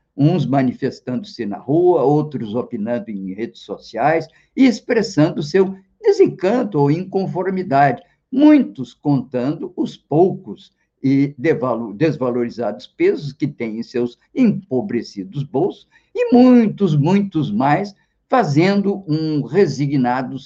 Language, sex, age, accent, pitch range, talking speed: Portuguese, male, 50-69, Brazilian, 120-195 Hz, 105 wpm